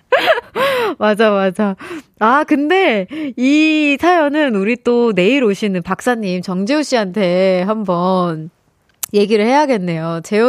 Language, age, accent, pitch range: Korean, 20-39, native, 195-290 Hz